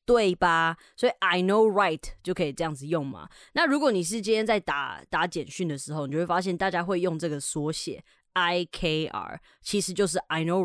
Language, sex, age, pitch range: Chinese, female, 20-39, 160-220 Hz